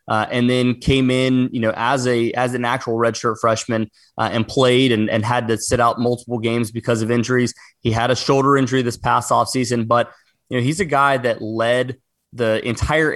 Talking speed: 215 wpm